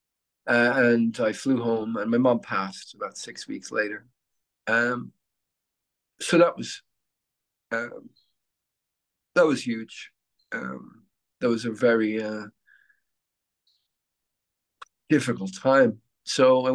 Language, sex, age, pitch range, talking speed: English, male, 50-69, 105-130 Hz, 110 wpm